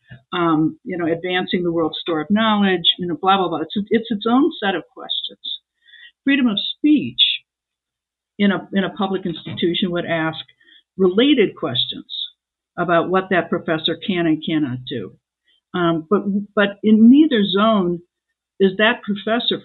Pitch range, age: 170-220 Hz, 60-79